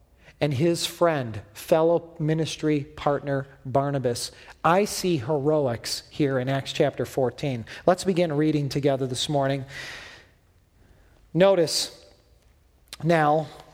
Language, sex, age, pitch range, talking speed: English, male, 40-59, 125-165 Hz, 100 wpm